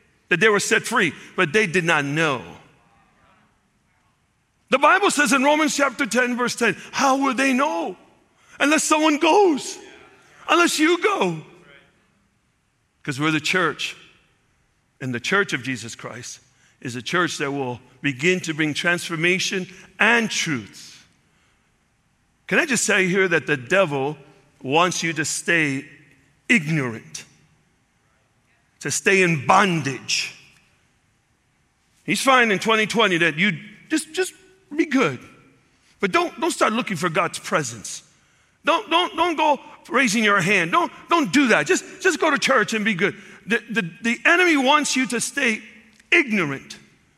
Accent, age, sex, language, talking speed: American, 50-69, male, English, 145 wpm